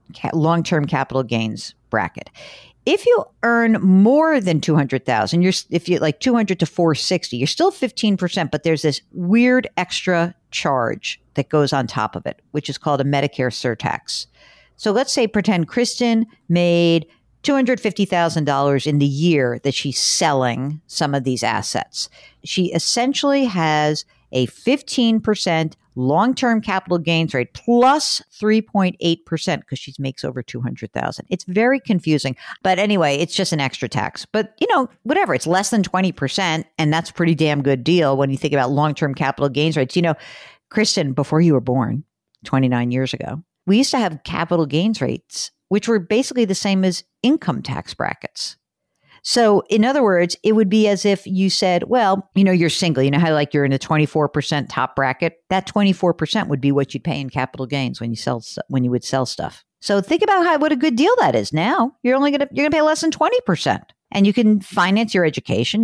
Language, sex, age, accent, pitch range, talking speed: English, female, 50-69, American, 145-215 Hz, 195 wpm